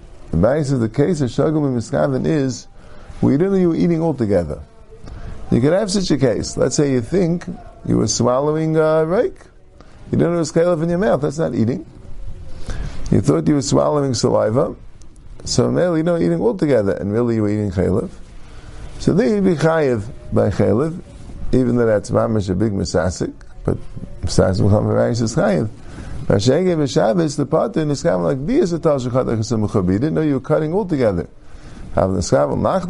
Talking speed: 170 wpm